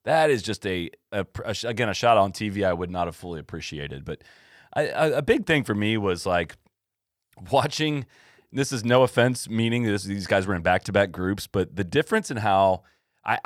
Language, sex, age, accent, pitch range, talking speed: English, male, 30-49, American, 95-120 Hz, 195 wpm